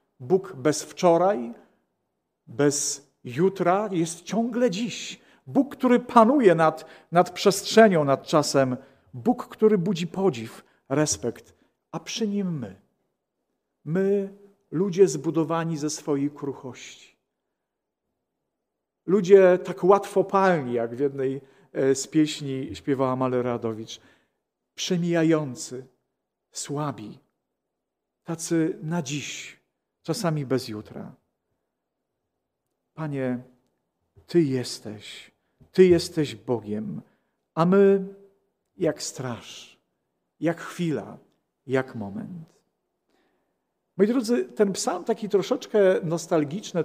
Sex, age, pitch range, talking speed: male, 50-69, 140-200 Hz, 90 wpm